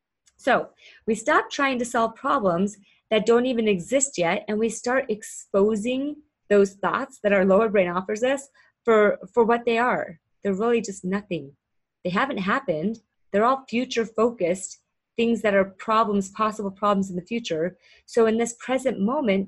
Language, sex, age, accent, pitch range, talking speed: English, female, 30-49, American, 195-245 Hz, 165 wpm